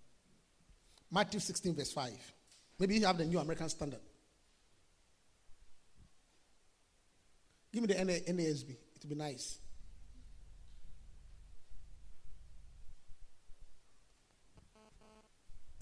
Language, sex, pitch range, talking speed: English, male, 150-225 Hz, 70 wpm